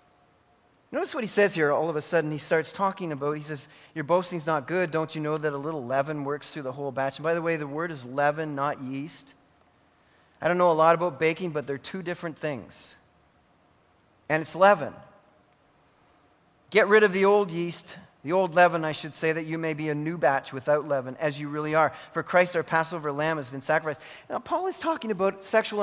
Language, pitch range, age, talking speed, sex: English, 155-225 Hz, 40-59, 220 wpm, male